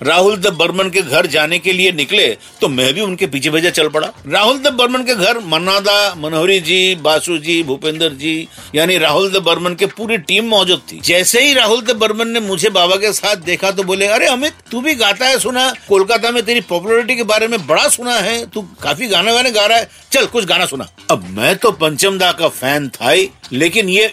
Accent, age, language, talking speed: native, 50-69, Hindi, 215 wpm